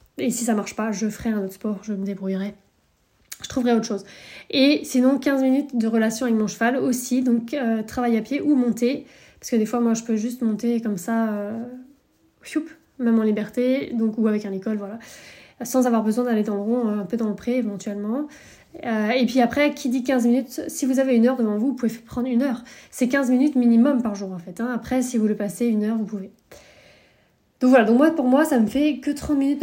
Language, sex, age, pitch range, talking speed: French, female, 20-39, 225-265 Hz, 245 wpm